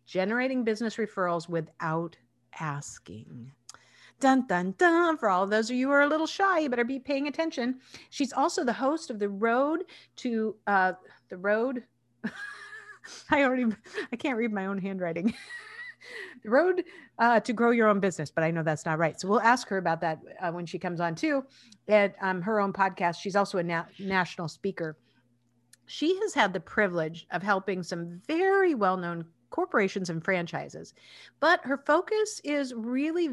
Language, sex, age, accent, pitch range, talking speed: English, female, 50-69, American, 170-260 Hz, 175 wpm